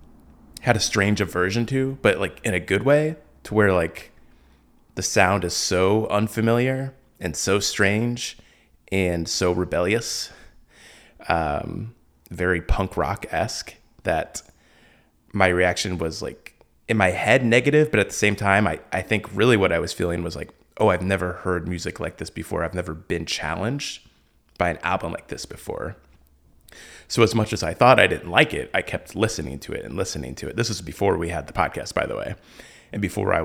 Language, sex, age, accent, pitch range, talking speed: English, male, 20-39, American, 85-105 Hz, 185 wpm